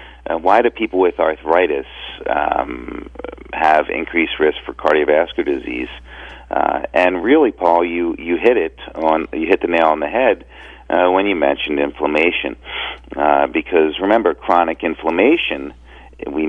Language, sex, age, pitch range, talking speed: English, male, 40-59, 70-105 Hz, 140 wpm